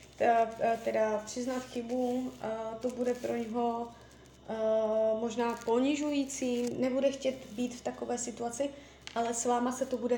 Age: 20-39